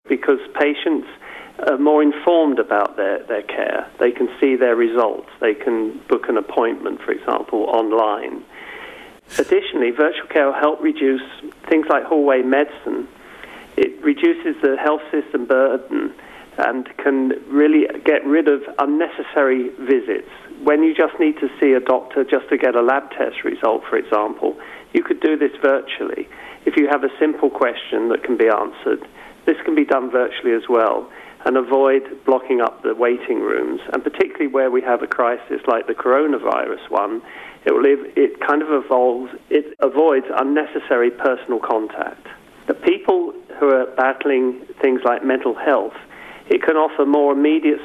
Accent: British